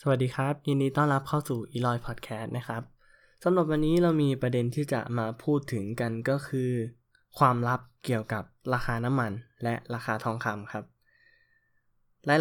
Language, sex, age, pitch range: Thai, male, 20-39, 115-145 Hz